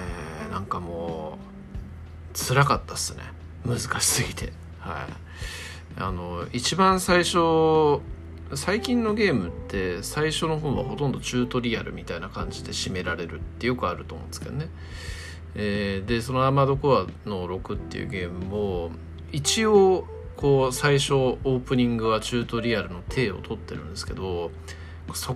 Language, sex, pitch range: Japanese, male, 80-125 Hz